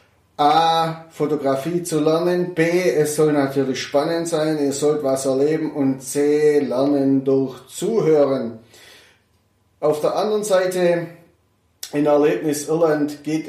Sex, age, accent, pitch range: male, 30-49, German, 135-160 Hz